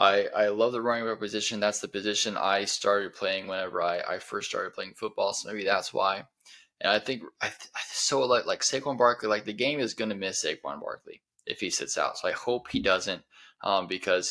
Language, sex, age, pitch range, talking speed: English, male, 10-29, 95-120 Hz, 230 wpm